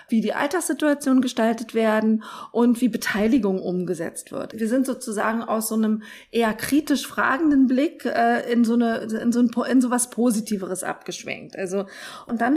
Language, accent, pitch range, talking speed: German, German, 200-255 Hz, 160 wpm